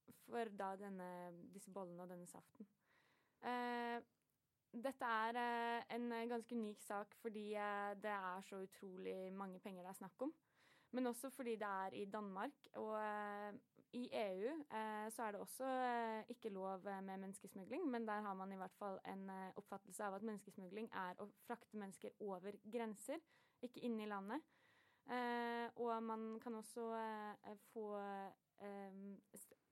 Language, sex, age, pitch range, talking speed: English, female, 20-39, 200-235 Hz, 175 wpm